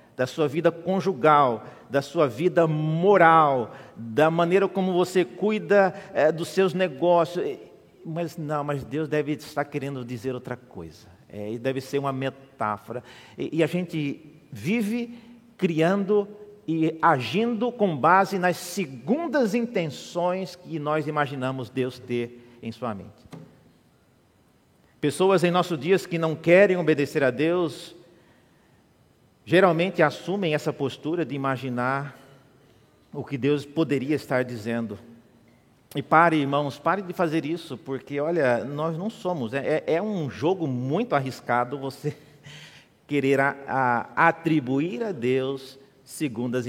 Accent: Brazilian